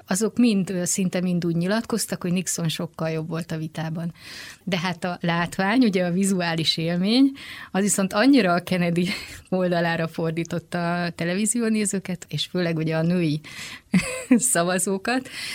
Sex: female